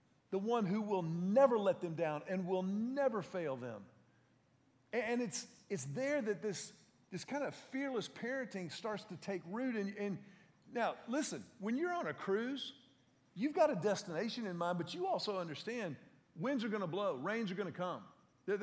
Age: 40-59